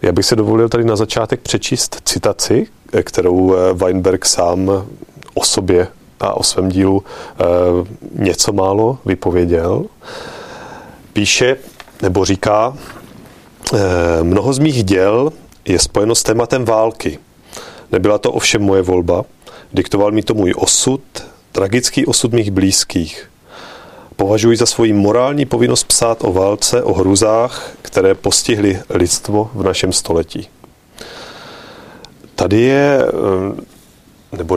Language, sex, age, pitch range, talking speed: Czech, male, 30-49, 95-115 Hz, 115 wpm